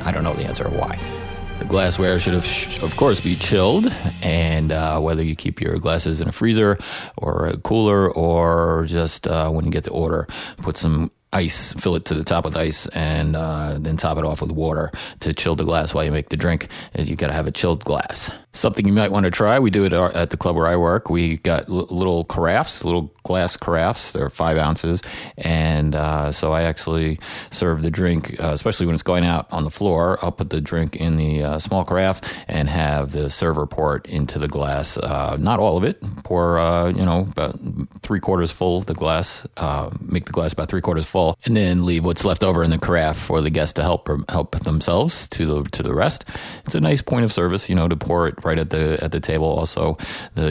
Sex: male